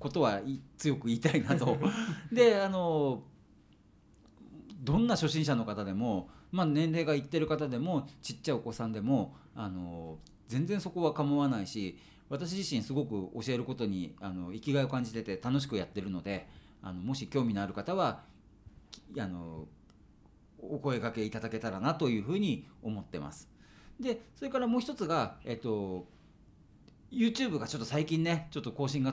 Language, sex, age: Japanese, male, 40-59